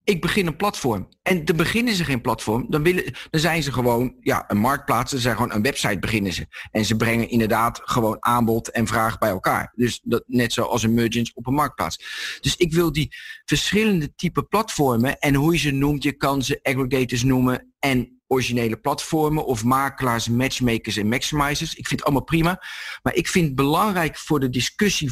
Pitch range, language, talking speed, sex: 125-175 Hz, Dutch, 205 wpm, male